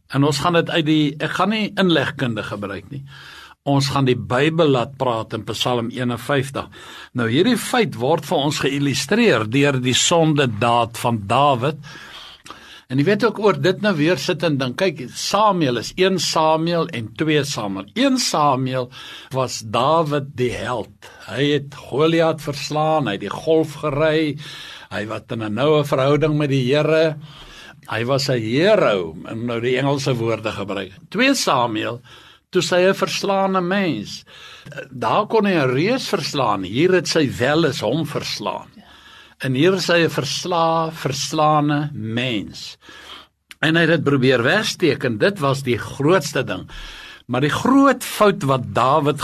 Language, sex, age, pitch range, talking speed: English, male, 60-79, 125-165 Hz, 160 wpm